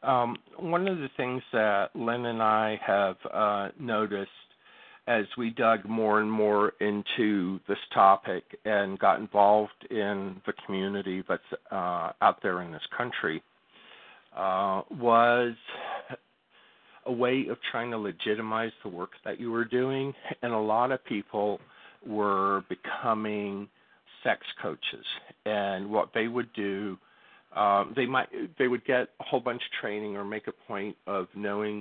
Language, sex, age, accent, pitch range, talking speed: English, male, 50-69, American, 100-115 Hz, 150 wpm